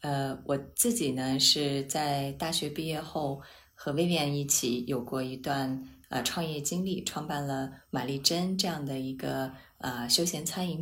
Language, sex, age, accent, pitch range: Chinese, female, 20-39, native, 130-165 Hz